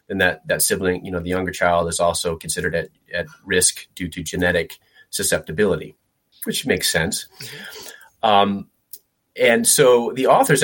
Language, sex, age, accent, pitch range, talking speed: English, male, 30-49, American, 85-110 Hz, 150 wpm